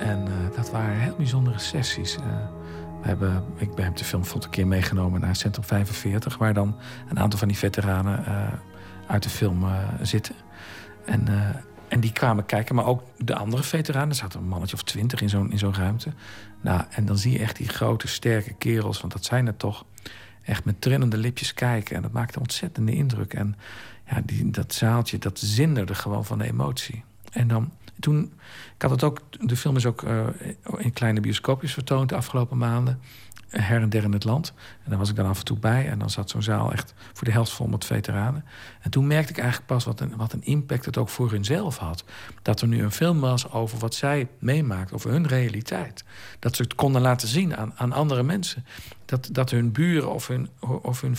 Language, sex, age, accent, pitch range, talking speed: Dutch, male, 50-69, Dutch, 105-130 Hz, 220 wpm